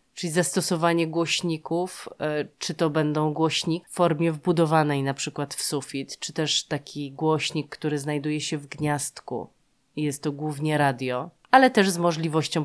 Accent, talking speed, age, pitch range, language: native, 145 wpm, 30-49, 140-170 Hz, Polish